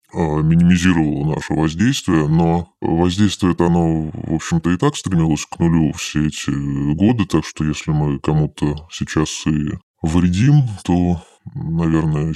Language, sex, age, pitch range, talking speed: Russian, female, 20-39, 80-100 Hz, 125 wpm